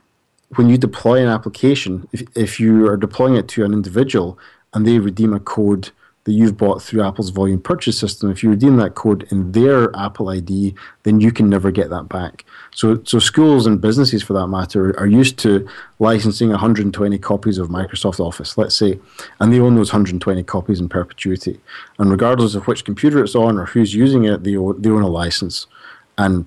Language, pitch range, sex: English, 95-115 Hz, male